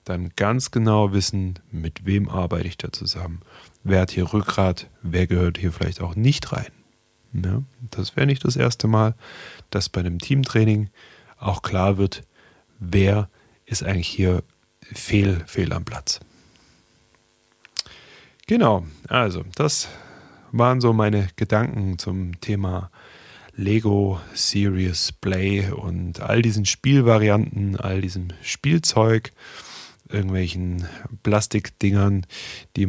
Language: German